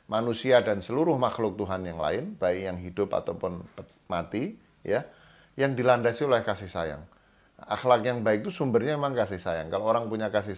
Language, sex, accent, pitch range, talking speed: English, male, Indonesian, 100-125 Hz, 170 wpm